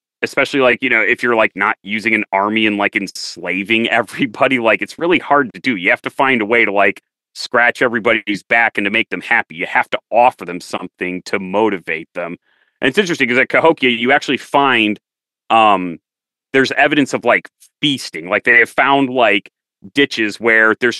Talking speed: 195 wpm